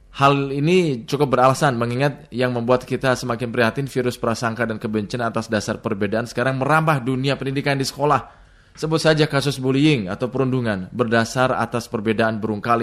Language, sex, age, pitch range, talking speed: Indonesian, male, 20-39, 100-125 Hz, 150 wpm